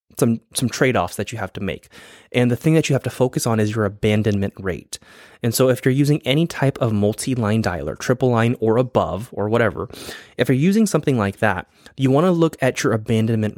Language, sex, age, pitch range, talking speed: English, male, 20-39, 105-130 Hz, 220 wpm